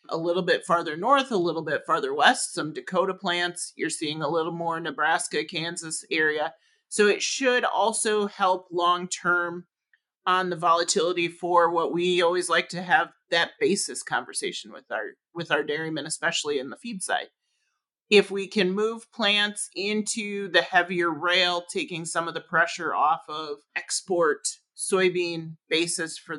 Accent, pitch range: American, 160-190 Hz